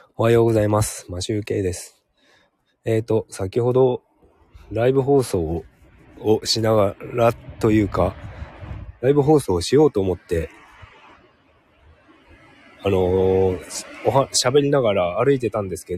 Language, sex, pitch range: Japanese, male, 95-125 Hz